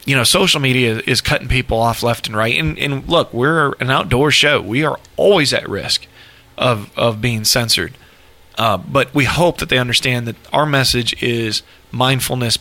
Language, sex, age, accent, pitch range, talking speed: English, male, 40-59, American, 105-145 Hz, 185 wpm